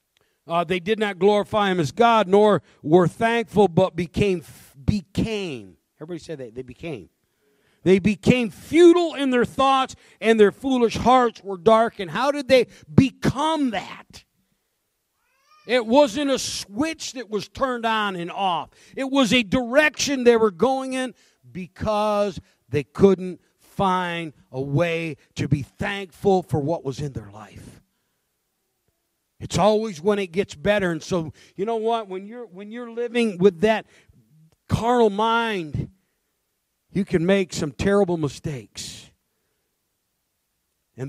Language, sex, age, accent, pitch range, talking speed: English, male, 50-69, American, 165-225 Hz, 140 wpm